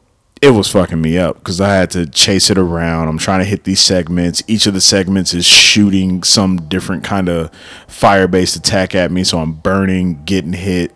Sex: male